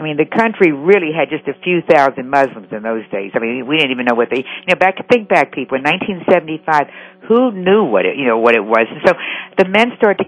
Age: 60-79